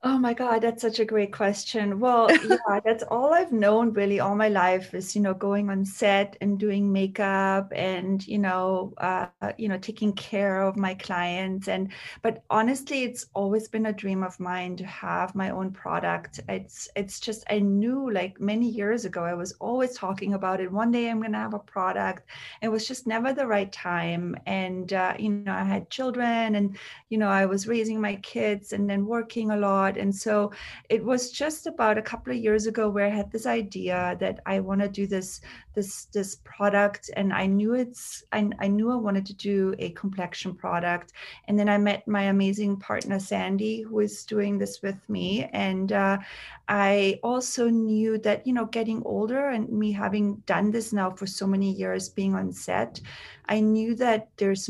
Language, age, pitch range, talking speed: English, 30-49, 195-225 Hz, 200 wpm